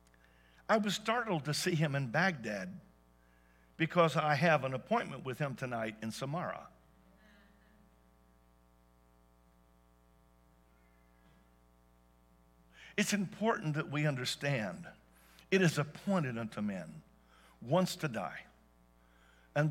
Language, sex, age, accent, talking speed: English, male, 60-79, American, 95 wpm